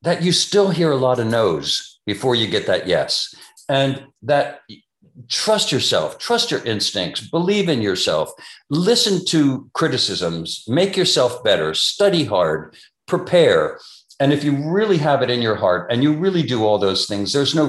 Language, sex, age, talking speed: English, male, 60-79, 170 wpm